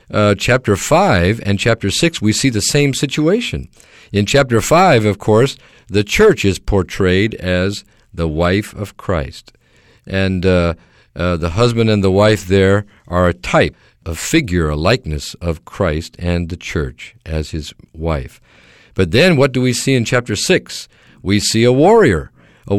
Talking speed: 165 wpm